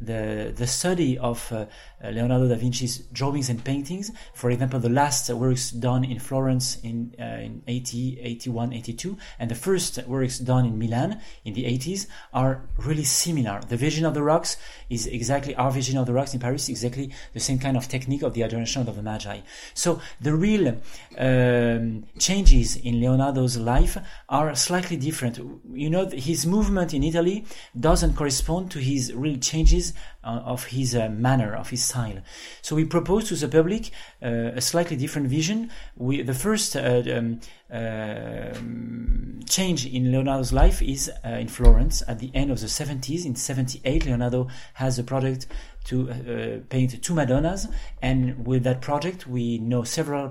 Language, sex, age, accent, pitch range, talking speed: English, male, 30-49, French, 120-150 Hz, 170 wpm